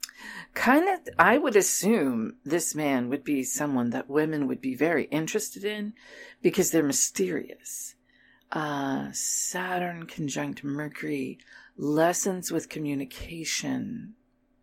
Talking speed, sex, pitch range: 110 wpm, female, 145-235 Hz